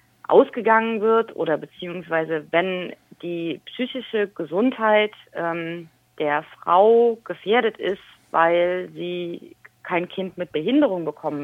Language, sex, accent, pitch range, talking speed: German, female, German, 155-190 Hz, 105 wpm